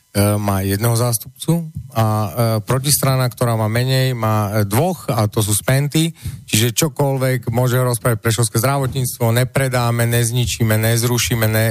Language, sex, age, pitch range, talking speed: Slovak, male, 40-59, 110-125 Hz, 120 wpm